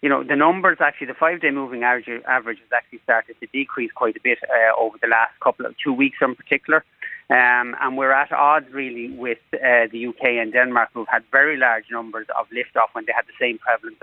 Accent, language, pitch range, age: Irish, English, 115-140 Hz, 30-49